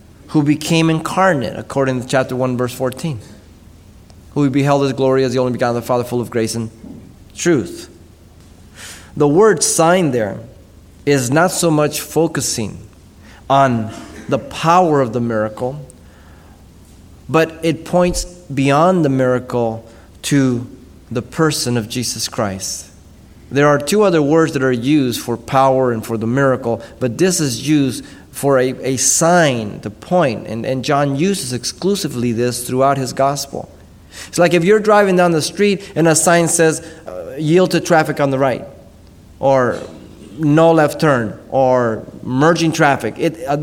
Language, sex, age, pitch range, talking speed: English, male, 30-49, 115-170 Hz, 155 wpm